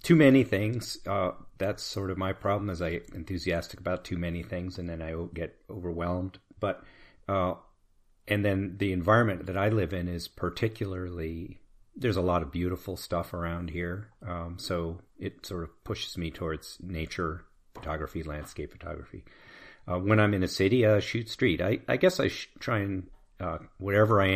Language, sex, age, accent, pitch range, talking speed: English, male, 40-59, American, 85-100 Hz, 180 wpm